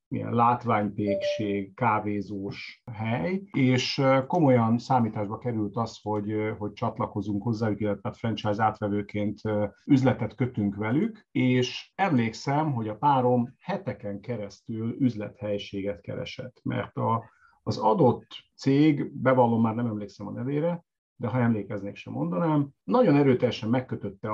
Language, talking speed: English, 115 wpm